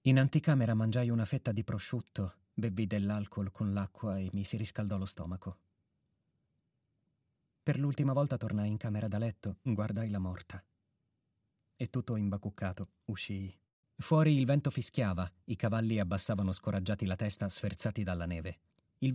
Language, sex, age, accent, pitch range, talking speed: Italian, male, 40-59, native, 100-130 Hz, 145 wpm